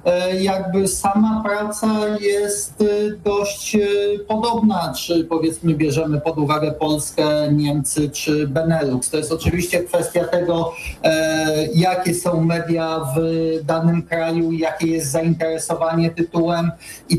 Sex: male